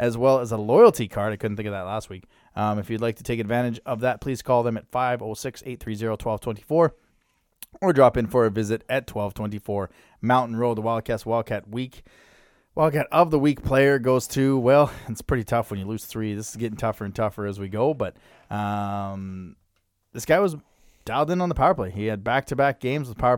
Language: English